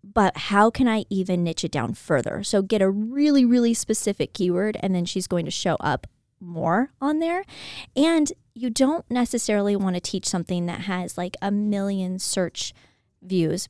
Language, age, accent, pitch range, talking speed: English, 20-39, American, 185-235 Hz, 180 wpm